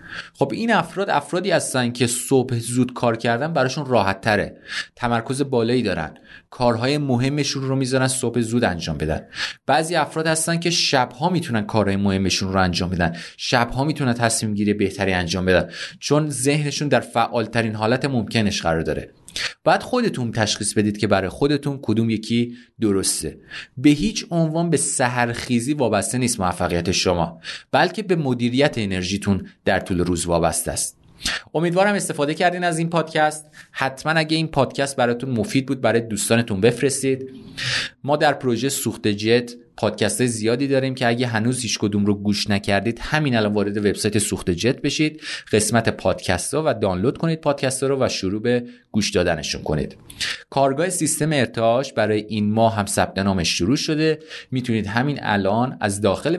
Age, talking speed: 30-49, 155 wpm